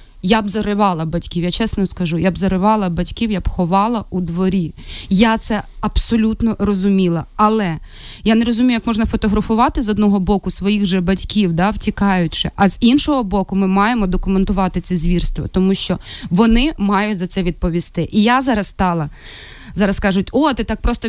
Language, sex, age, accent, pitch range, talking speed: Ukrainian, female, 20-39, native, 190-225 Hz, 175 wpm